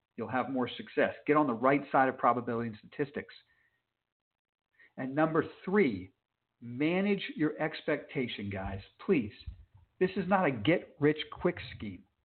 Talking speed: 140 wpm